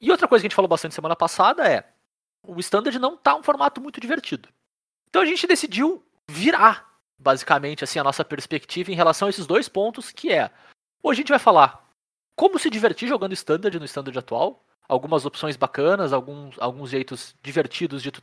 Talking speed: 195 wpm